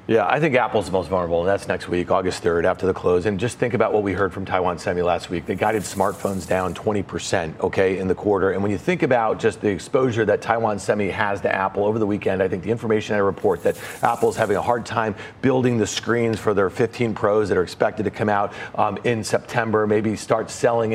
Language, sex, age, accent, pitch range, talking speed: English, male, 40-59, American, 110-150 Hz, 245 wpm